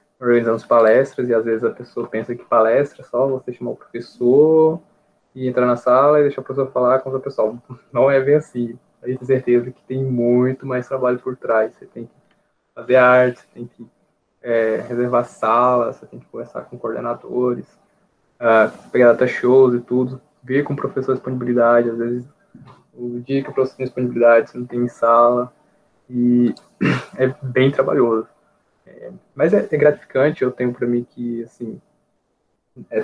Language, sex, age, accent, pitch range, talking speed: Portuguese, male, 20-39, Brazilian, 120-145 Hz, 180 wpm